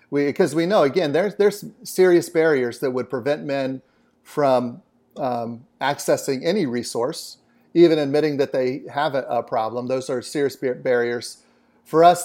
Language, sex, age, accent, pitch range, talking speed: English, male, 40-59, American, 125-150 Hz, 155 wpm